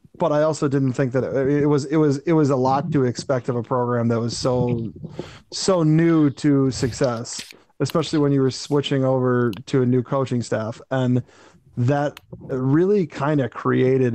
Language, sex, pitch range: English, male, 125-150 Hz